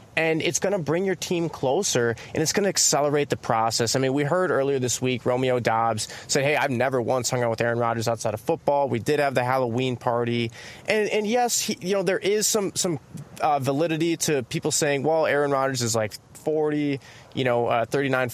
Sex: male